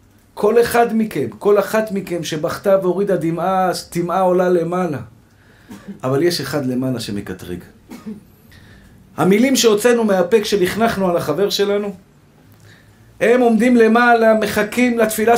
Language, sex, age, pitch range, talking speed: Hebrew, male, 50-69, 170-230 Hz, 115 wpm